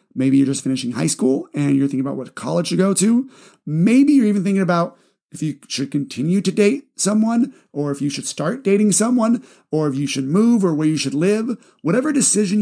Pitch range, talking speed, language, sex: 140-200 Hz, 220 wpm, English, male